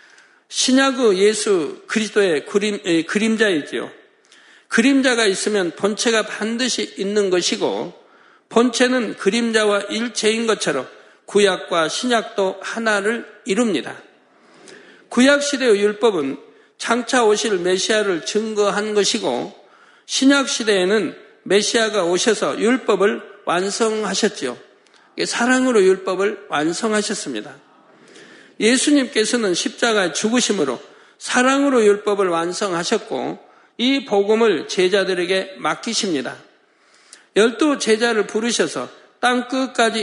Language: Korean